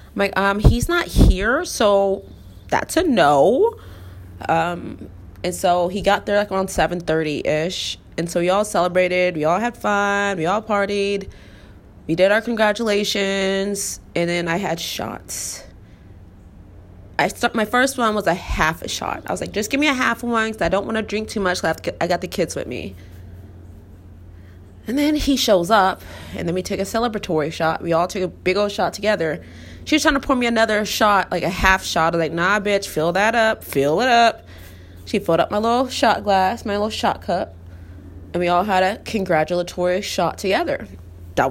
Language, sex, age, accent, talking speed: English, female, 20-39, American, 205 wpm